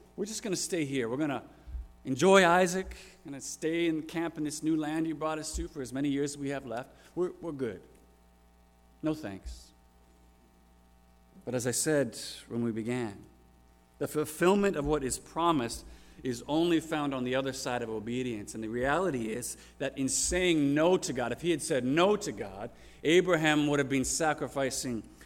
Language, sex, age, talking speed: English, male, 40-59, 190 wpm